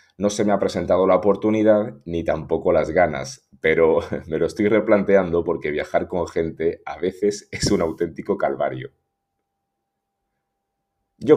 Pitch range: 90-115 Hz